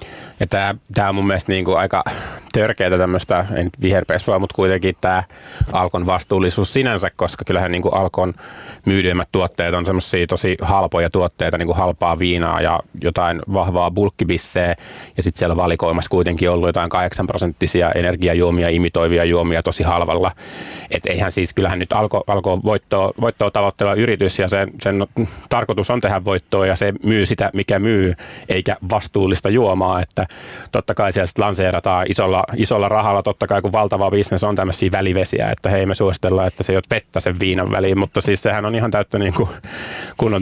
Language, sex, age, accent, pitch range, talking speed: Finnish, male, 30-49, native, 90-100 Hz, 165 wpm